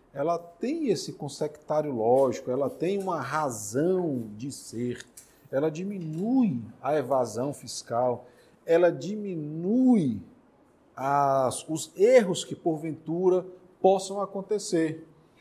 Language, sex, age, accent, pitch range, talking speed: Portuguese, male, 40-59, Brazilian, 145-195 Hz, 95 wpm